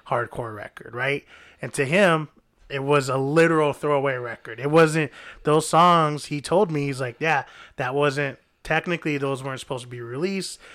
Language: English